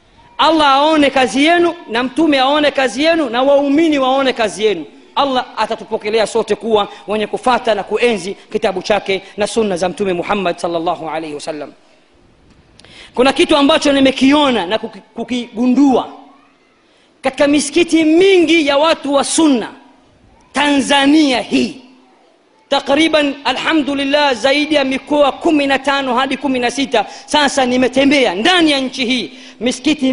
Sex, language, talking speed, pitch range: female, Swahili, 125 wpm, 215-275 Hz